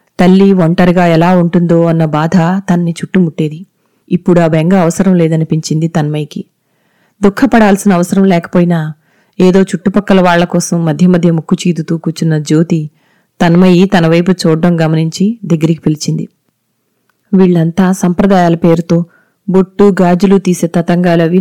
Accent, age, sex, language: native, 30-49, female, Telugu